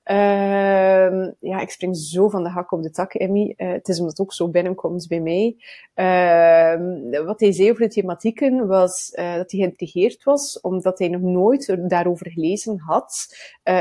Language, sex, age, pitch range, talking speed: Dutch, female, 30-49, 180-215 Hz, 185 wpm